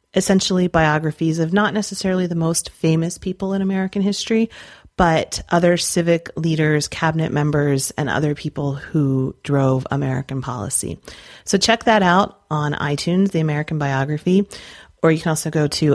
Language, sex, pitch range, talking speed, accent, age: English, female, 150-190 Hz, 150 wpm, American, 30-49